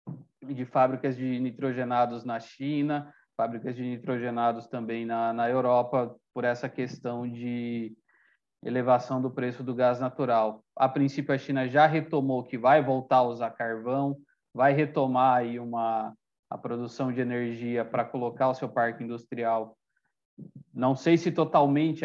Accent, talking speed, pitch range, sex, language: Brazilian, 140 wpm, 120-140 Hz, male, Portuguese